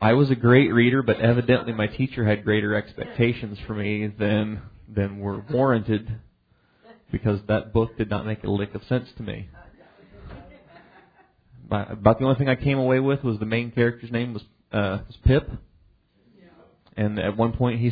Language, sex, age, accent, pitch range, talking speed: English, male, 30-49, American, 105-120 Hz, 180 wpm